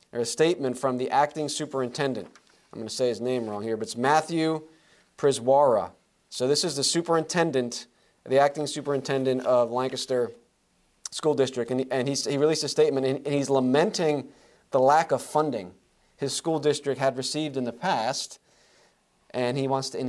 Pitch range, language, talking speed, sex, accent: 125-150 Hz, English, 175 wpm, male, American